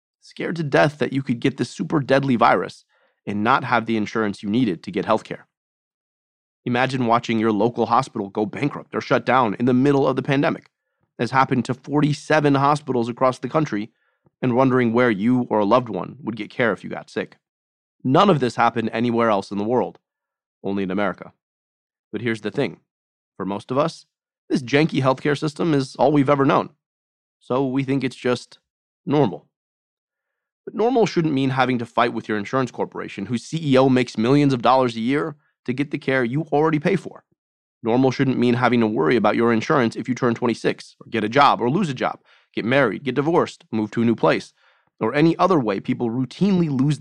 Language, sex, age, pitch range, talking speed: English, male, 30-49, 115-140 Hz, 205 wpm